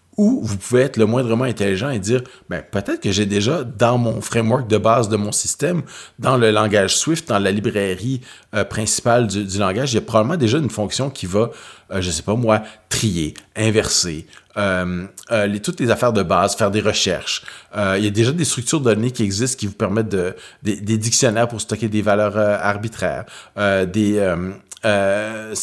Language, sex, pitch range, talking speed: French, male, 100-120 Hz, 210 wpm